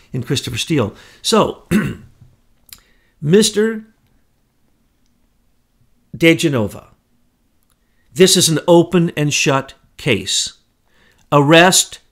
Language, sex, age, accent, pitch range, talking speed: English, male, 50-69, American, 120-170 Hz, 75 wpm